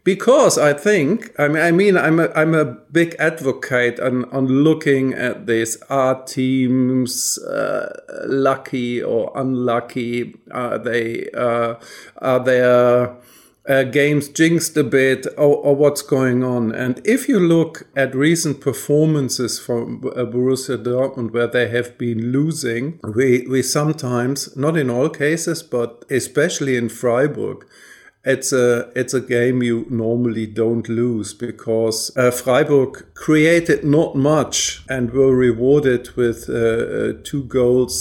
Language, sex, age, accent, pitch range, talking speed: English, male, 50-69, German, 120-140 Hz, 140 wpm